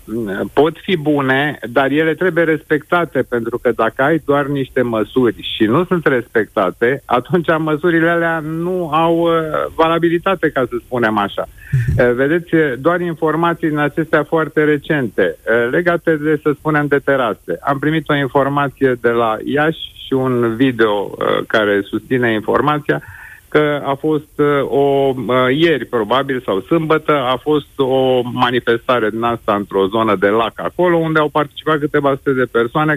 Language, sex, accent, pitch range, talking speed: Romanian, male, native, 120-155 Hz, 145 wpm